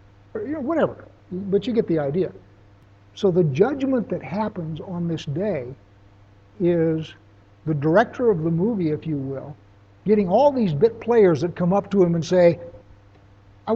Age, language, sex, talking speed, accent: 60-79, English, male, 165 wpm, American